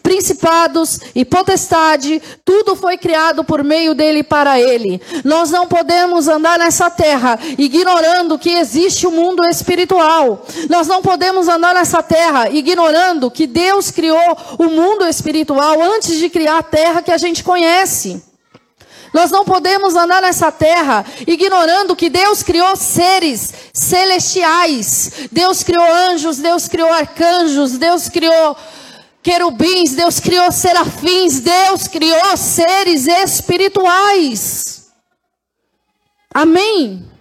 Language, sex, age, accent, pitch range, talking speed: Portuguese, female, 40-59, Brazilian, 320-365 Hz, 120 wpm